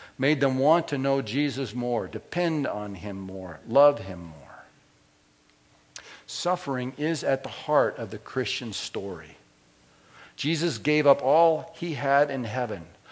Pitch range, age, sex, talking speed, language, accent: 110-155 Hz, 50-69, male, 140 wpm, English, American